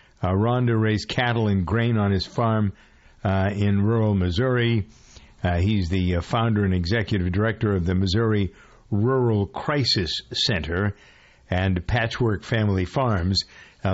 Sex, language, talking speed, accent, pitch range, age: male, English, 135 wpm, American, 95-115 Hz, 60-79